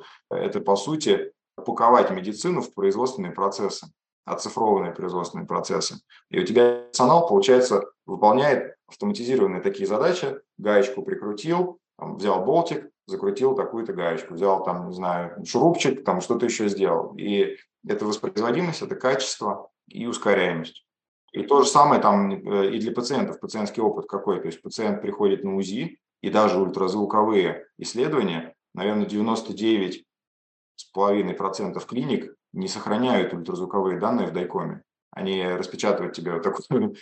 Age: 20-39